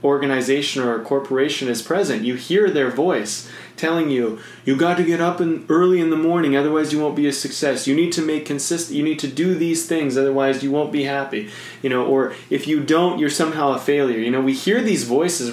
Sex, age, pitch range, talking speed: male, 30-49, 120-155 Hz, 230 wpm